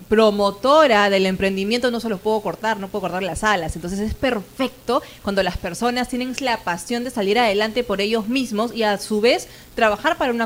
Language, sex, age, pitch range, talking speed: Spanish, female, 30-49, 200-245 Hz, 200 wpm